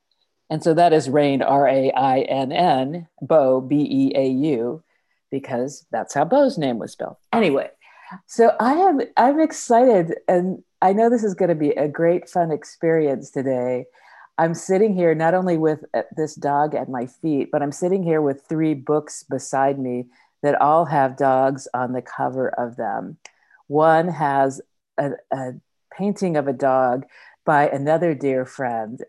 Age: 50-69